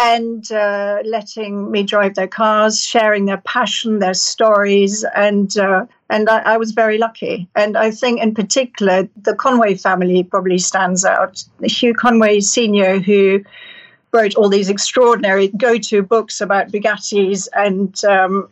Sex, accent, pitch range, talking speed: female, British, 200-225 Hz, 145 wpm